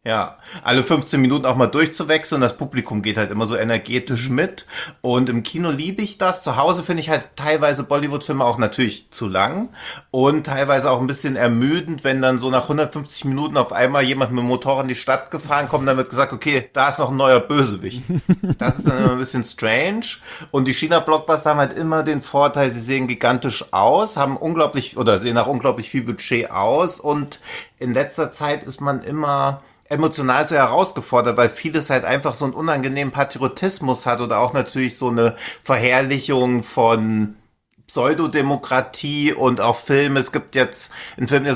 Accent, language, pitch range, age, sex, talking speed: German, German, 125-150 Hz, 30-49, male, 190 wpm